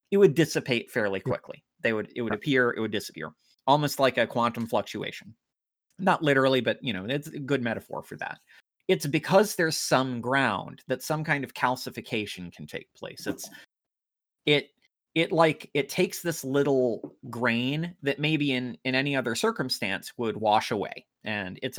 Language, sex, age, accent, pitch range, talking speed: English, male, 30-49, American, 120-155 Hz, 175 wpm